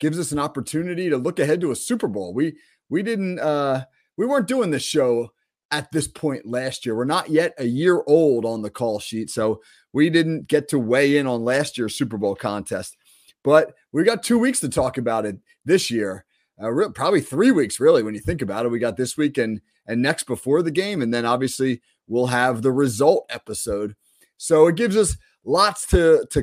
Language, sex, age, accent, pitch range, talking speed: English, male, 30-49, American, 125-155 Hz, 215 wpm